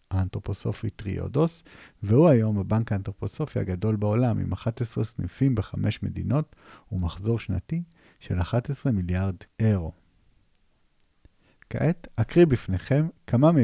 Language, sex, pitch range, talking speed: Hebrew, male, 100-125 Hz, 100 wpm